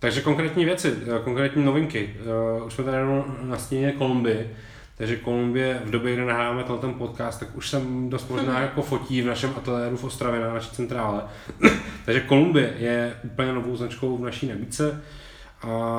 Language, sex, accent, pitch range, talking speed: Czech, male, native, 115-130 Hz, 165 wpm